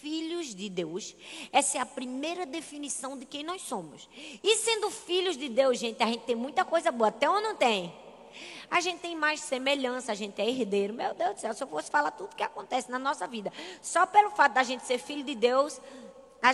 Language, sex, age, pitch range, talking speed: Portuguese, female, 20-39, 240-340 Hz, 220 wpm